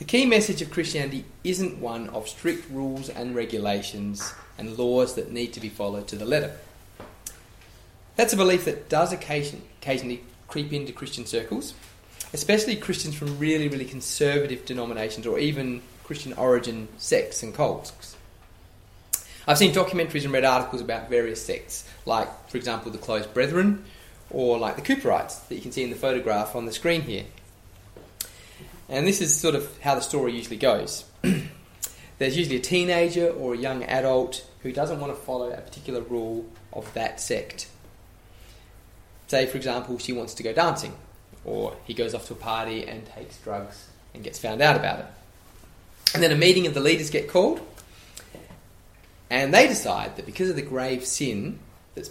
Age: 20-39